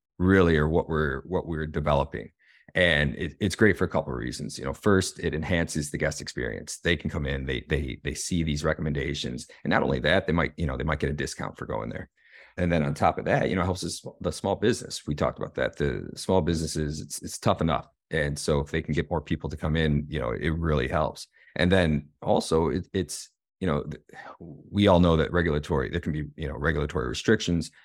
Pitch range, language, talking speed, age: 75-90 Hz, English, 235 wpm, 30-49